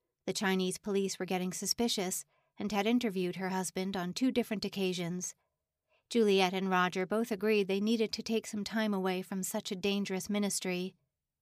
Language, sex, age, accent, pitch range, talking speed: English, female, 40-59, American, 190-220 Hz, 170 wpm